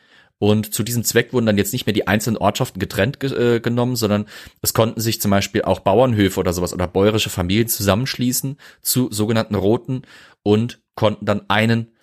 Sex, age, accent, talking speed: male, 30-49, German, 180 wpm